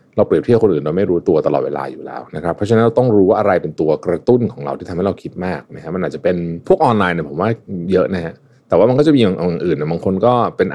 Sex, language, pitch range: male, Thai, 95-135 Hz